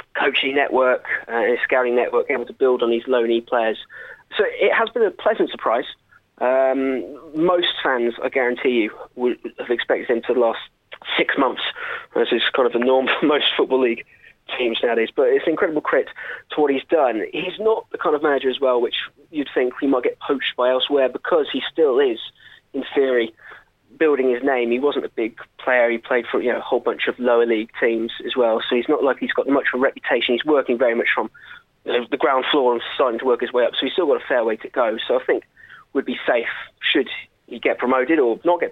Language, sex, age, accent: English, male, 20-39, British